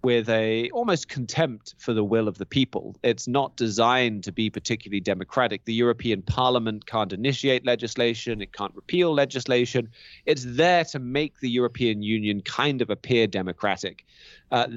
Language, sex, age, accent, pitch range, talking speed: English, male, 30-49, British, 110-145 Hz, 160 wpm